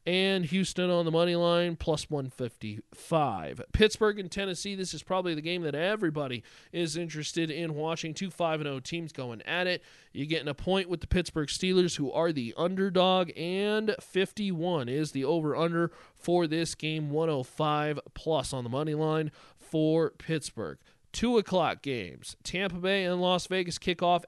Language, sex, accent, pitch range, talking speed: English, male, American, 140-180 Hz, 160 wpm